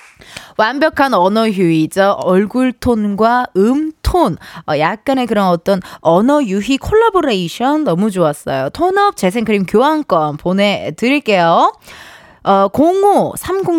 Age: 20-39